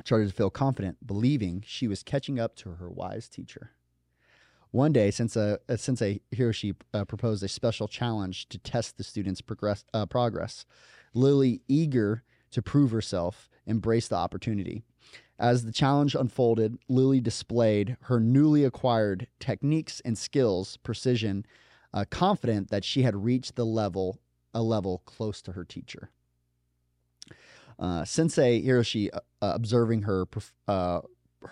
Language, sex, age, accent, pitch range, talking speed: English, male, 30-49, American, 95-125 Hz, 145 wpm